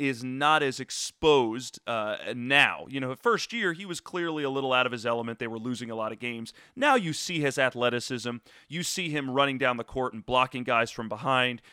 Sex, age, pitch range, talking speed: male, 30-49, 120-150 Hz, 225 wpm